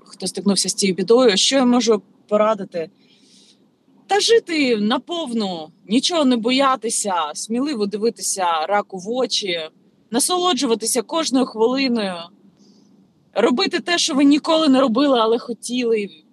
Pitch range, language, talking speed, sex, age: 190-245 Hz, Ukrainian, 120 wpm, female, 30-49